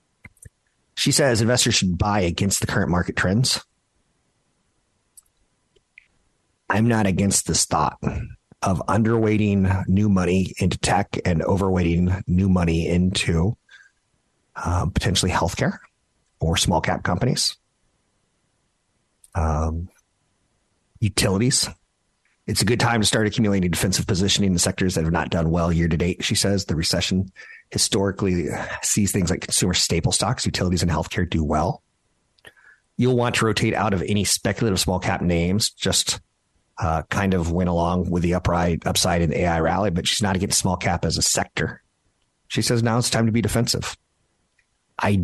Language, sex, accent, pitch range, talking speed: English, male, American, 85-105 Hz, 150 wpm